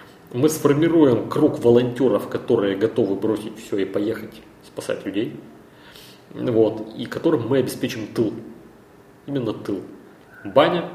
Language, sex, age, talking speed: Russian, male, 30-49, 115 wpm